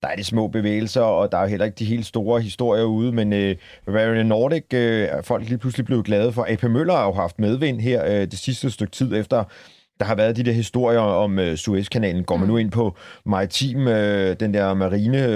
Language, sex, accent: Danish, male, native